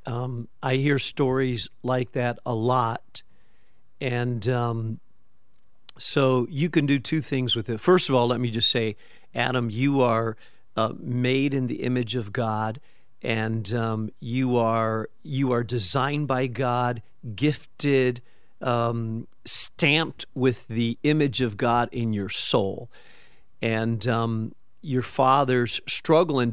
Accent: American